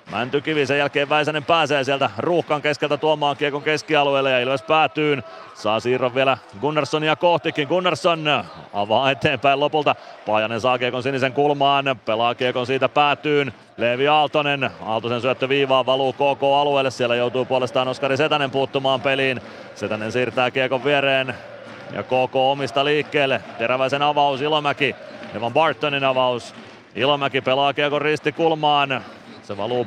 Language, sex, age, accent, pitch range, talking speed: Finnish, male, 30-49, native, 130-150 Hz, 135 wpm